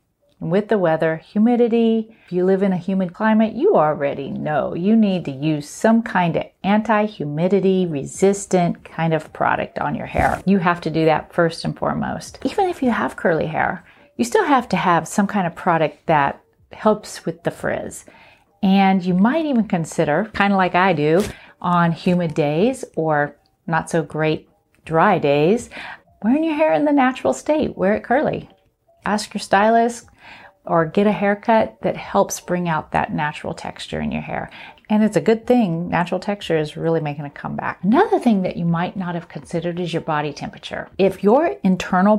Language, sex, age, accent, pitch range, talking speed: English, female, 40-59, American, 165-215 Hz, 185 wpm